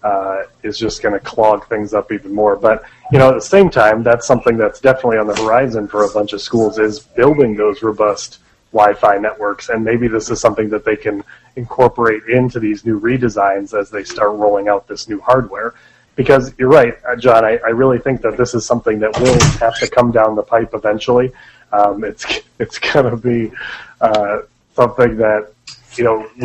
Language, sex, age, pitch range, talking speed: English, male, 30-49, 105-120 Hz, 195 wpm